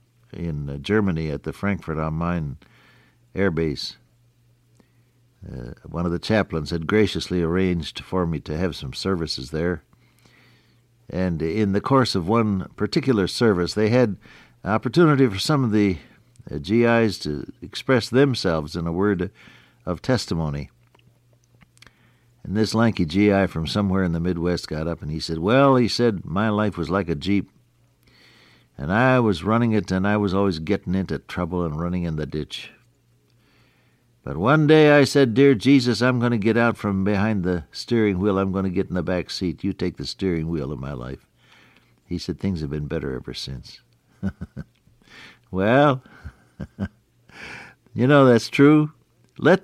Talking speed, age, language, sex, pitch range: 165 wpm, 60-79, English, male, 85-120 Hz